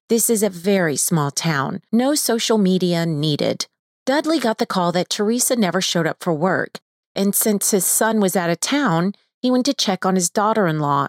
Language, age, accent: English, 30-49, American